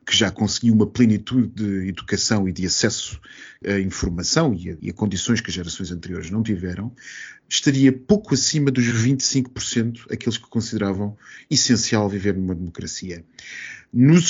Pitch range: 100-130 Hz